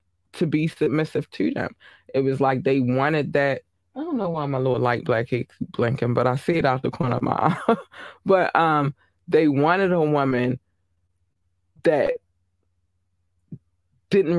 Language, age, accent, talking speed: English, 20-39, American, 160 wpm